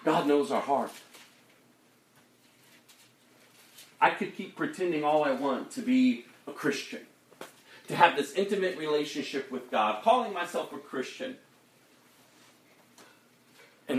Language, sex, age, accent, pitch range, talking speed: English, male, 40-59, American, 130-175 Hz, 115 wpm